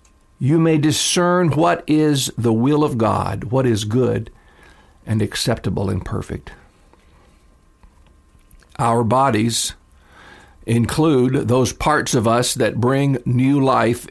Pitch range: 105-135 Hz